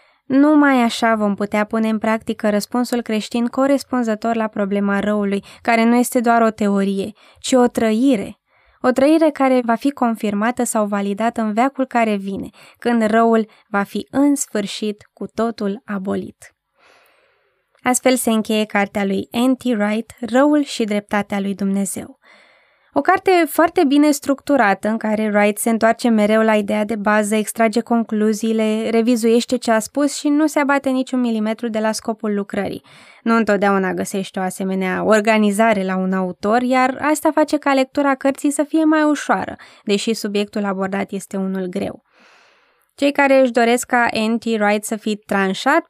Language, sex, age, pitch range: Romanian, female, 20-39, 205-260 Hz